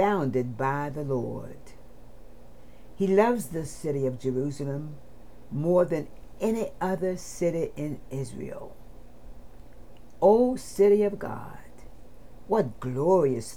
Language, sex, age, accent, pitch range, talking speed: English, female, 60-79, American, 130-190 Hz, 95 wpm